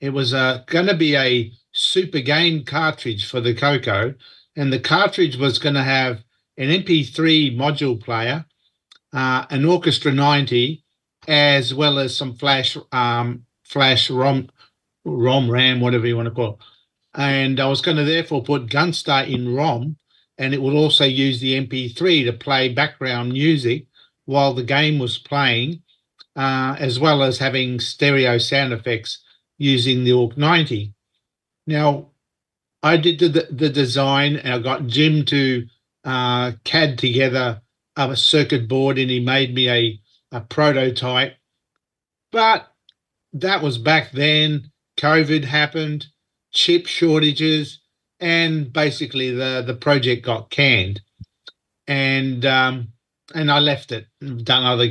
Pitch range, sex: 125-150 Hz, male